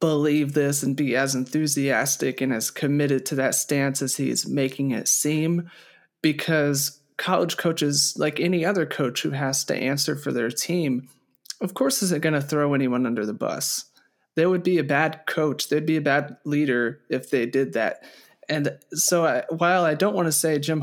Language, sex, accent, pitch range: English, male, American, 140-160 Hz